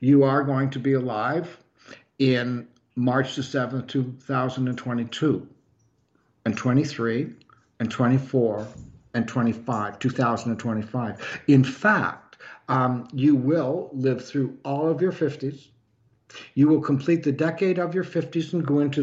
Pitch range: 130-190 Hz